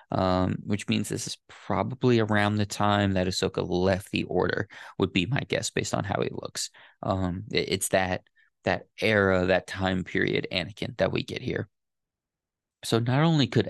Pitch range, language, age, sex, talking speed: 95-115 Hz, English, 20-39, male, 175 wpm